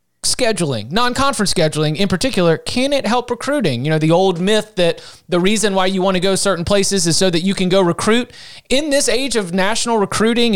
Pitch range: 160-210 Hz